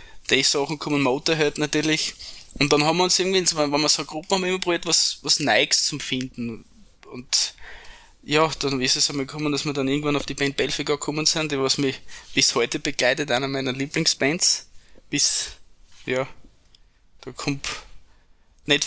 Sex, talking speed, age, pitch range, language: male, 175 wpm, 20-39, 130-155 Hz, German